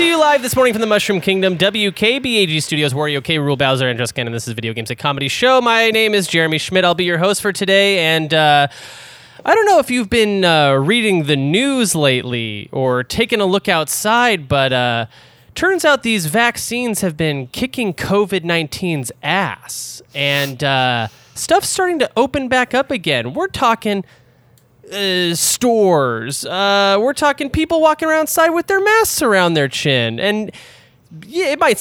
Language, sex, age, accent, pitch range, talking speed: English, male, 20-39, American, 145-230 Hz, 180 wpm